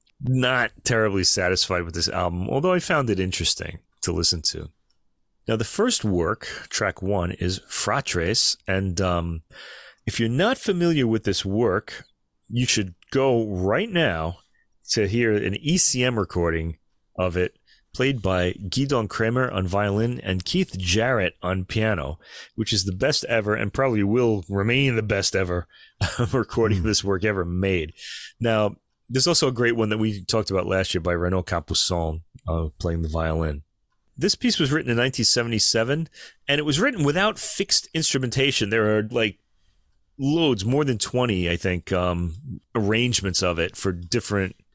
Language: English